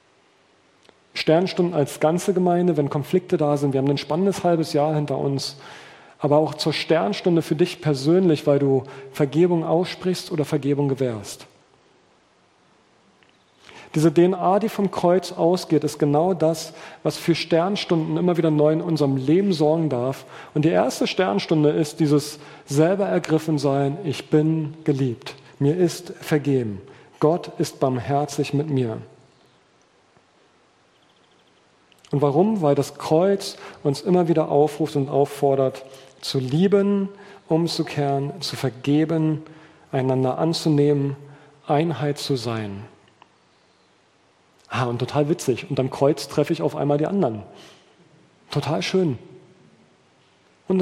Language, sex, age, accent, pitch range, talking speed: German, male, 40-59, German, 140-170 Hz, 125 wpm